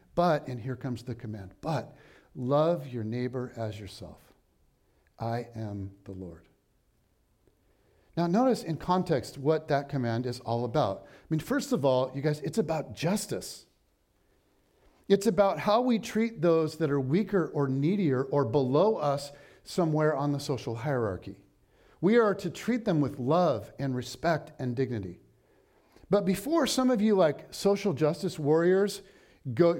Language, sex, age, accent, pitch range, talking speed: English, male, 50-69, American, 120-185 Hz, 155 wpm